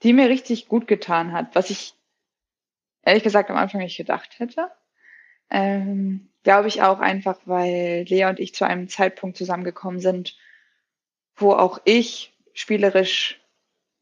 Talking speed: 140 wpm